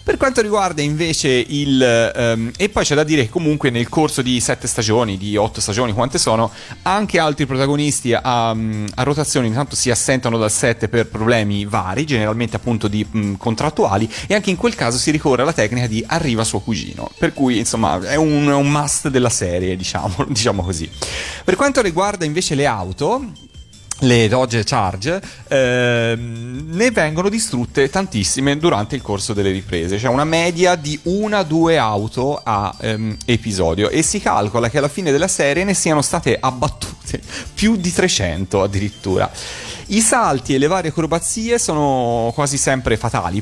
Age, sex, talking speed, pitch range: 30-49, male, 170 wpm, 105-145 Hz